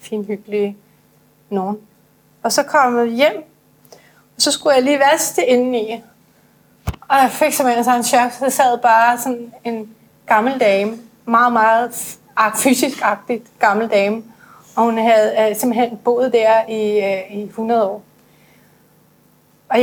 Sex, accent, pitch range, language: female, native, 220-255 Hz, Danish